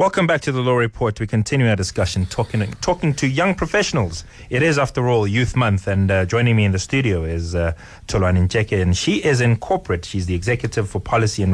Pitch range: 95-125 Hz